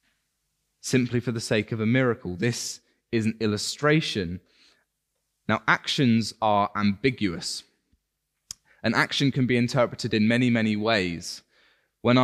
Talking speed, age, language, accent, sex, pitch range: 125 wpm, 20-39, English, British, male, 110-145 Hz